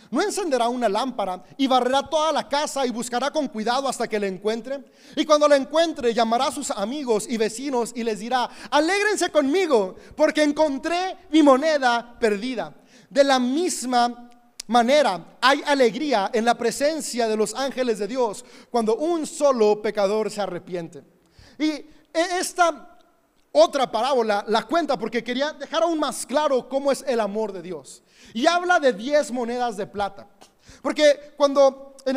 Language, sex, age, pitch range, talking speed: Spanish, male, 30-49, 230-295 Hz, 160 wpm